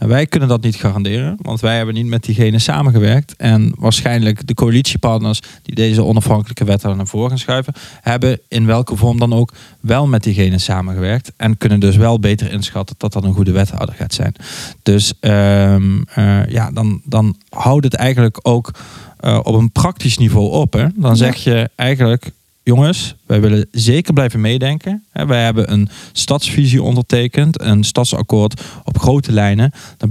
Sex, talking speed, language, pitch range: male, 165 wpm, Dutch, 105-125 Hz